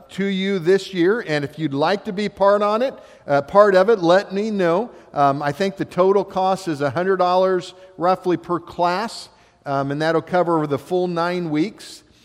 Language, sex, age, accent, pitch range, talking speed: English, male, 50-69, American, 145-180 Hz, 205 wpm